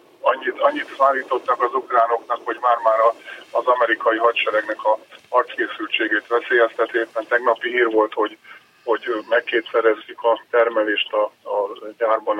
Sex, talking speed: male, 115 wpm